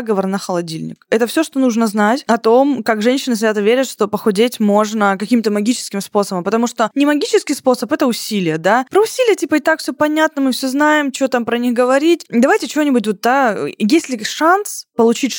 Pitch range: 205-255 Hz